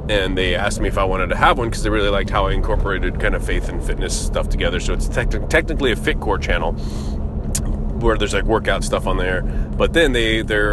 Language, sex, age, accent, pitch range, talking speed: English, male, 30-49, American, 80-110 Hz, 235 wpm